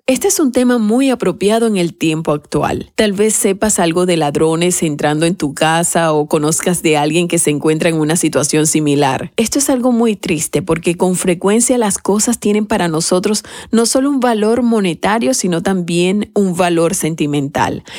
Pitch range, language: 165-220 Hz, Spanish